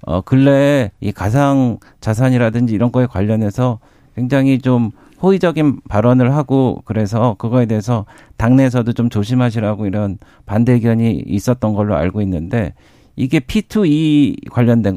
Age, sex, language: 50-69, male, Korean